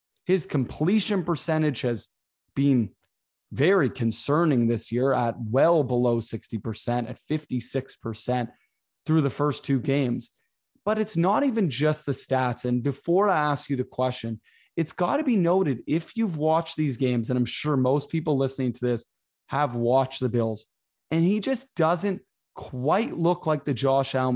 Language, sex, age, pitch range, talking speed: English, male, 20-39, 130-170 Hz, 165 wpm